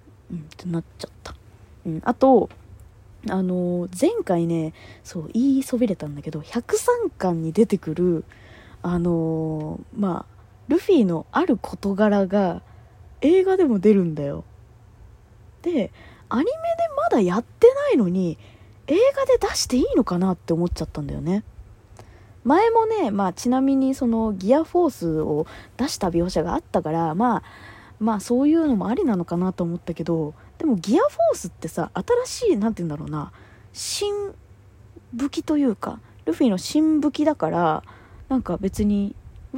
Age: 20-39